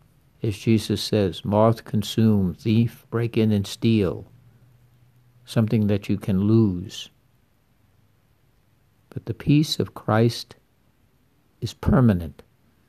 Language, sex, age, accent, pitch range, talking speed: English, male, 60-79, American, 100-120 Hz, 100 wpm